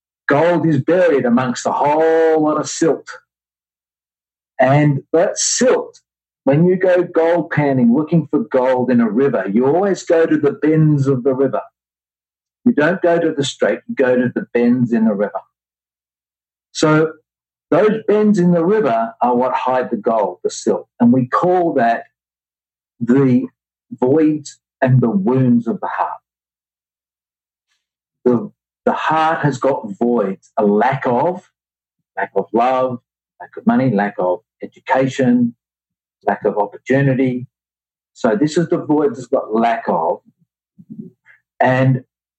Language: English